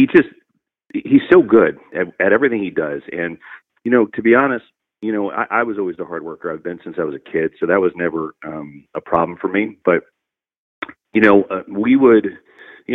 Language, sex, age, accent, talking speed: English, male, 40-59, American, 220 wpm